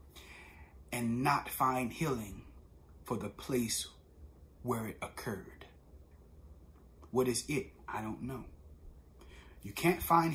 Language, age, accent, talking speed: English, 30-49, American, 110 wpm